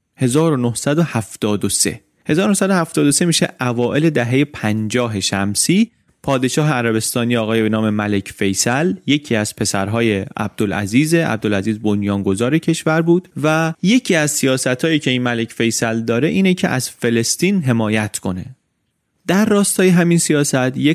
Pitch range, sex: 105-155 Hz, male